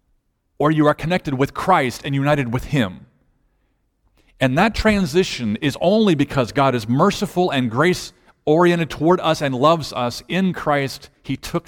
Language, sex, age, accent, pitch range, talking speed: English, male, 50-69, American, 110-150 Hz, 160 wpm